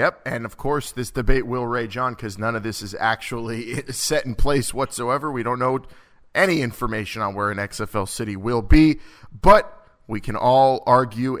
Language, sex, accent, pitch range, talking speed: English, male, American, 110-135 Hz, 190 wpm